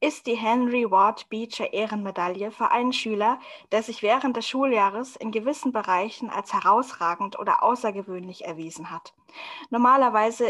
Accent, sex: German, female